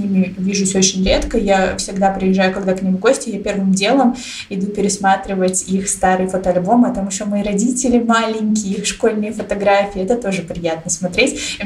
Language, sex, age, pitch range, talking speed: Russian, female, 20-39, 185-225 Hz, 170 wpm